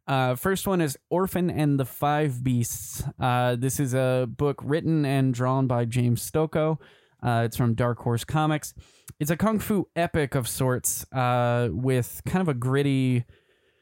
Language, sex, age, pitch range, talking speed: English, male, 20-39, 120-135 Hz, 170 wpm